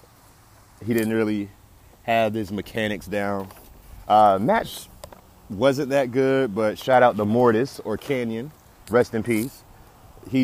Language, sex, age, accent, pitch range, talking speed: English, male, 30-49, American, 100-120 Hz, 130 wpm